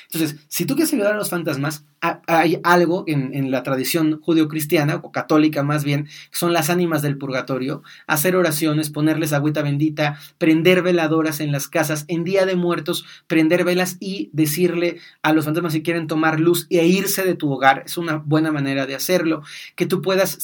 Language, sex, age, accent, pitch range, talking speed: Spanish, male, 30-49, Mexican, 155-180 Hz, 190 wpm